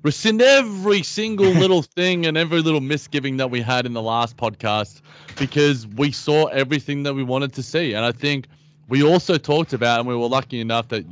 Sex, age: male, 20-39